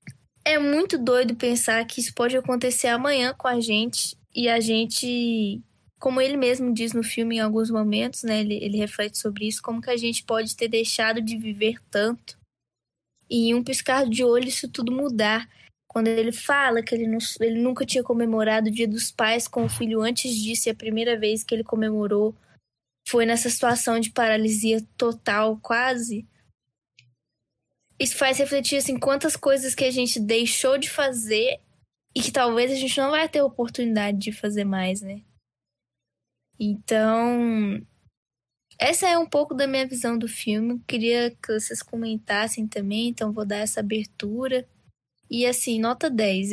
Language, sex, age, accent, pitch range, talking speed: Portuguese, female, 10-29, Brazilian, 215-250 Hz, 170 wpm